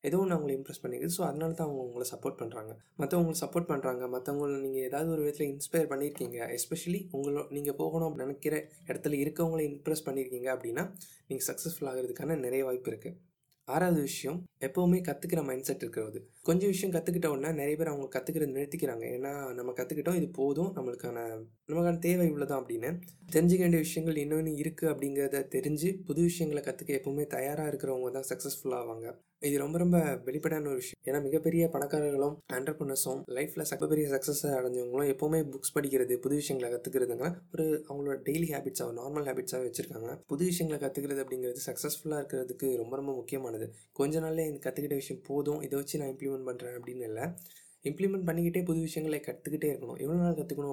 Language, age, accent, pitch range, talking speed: Tamil, 20-39, native, 135-160 Hz, 160 wpm